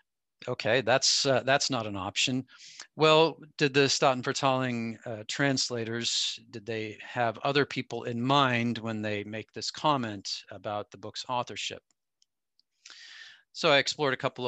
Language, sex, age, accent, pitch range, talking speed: English, male, 40-59, American, 115-140 Hz, 140 wpm